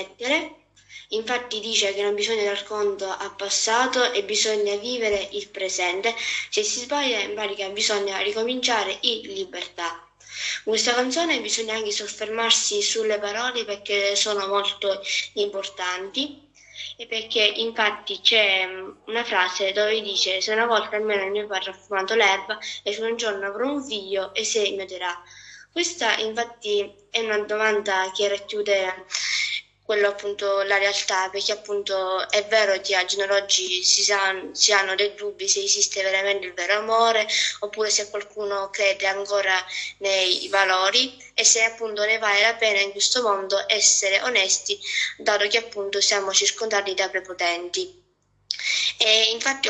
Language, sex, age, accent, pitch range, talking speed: Italian, female, 20-39, native, 200-230 Hz, 145 wpm